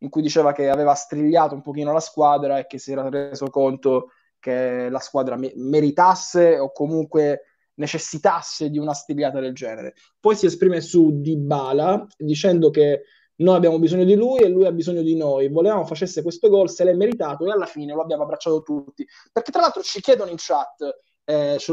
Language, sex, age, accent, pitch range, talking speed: Italian, male, 20-39, native, 150-190 Hz, 195 wpm